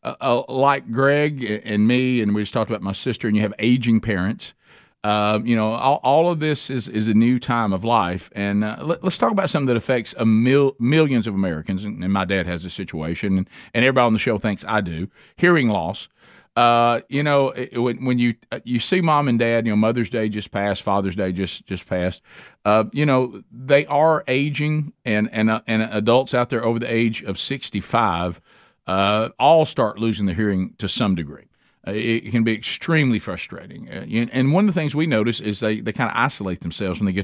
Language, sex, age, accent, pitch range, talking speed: English, male, 50-69, American, 100-130 Hz, 220 wpm